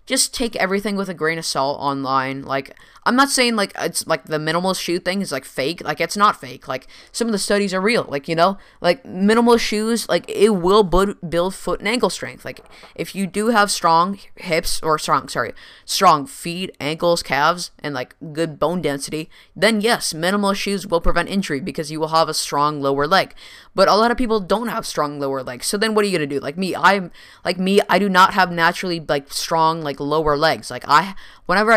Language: English